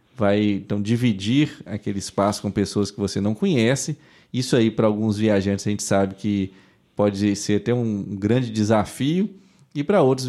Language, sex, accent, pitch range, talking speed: Portuguese, male, Brazilian, 105-135 Hz, 170 wpm